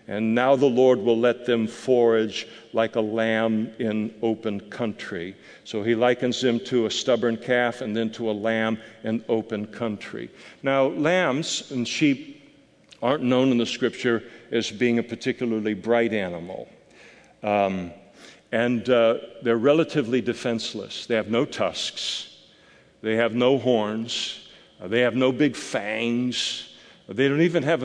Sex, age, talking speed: male, 60-79, 150 wpm